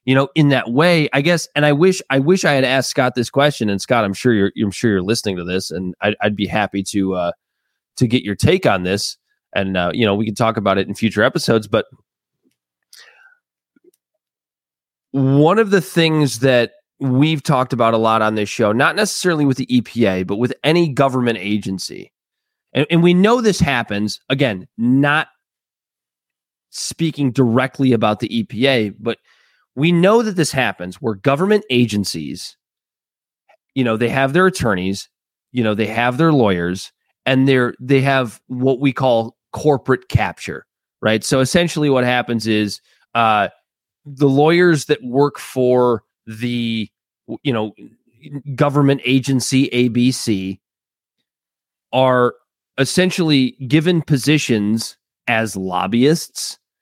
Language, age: English, 20-39